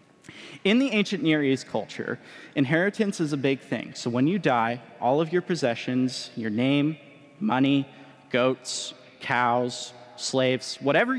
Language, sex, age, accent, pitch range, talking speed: English, male, 20-39, American, 120-160 Hz, 140 wpm